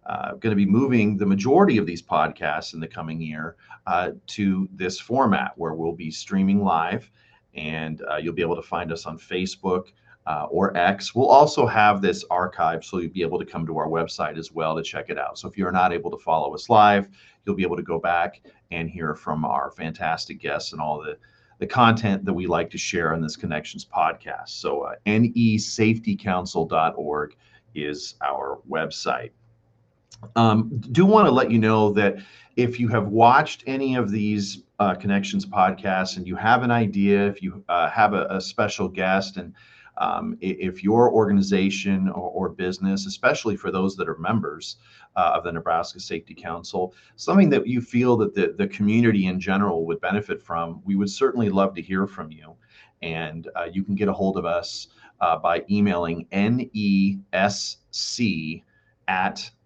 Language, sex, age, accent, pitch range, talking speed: English, male, 40-59, American, 85-110 Hz, 185 wpm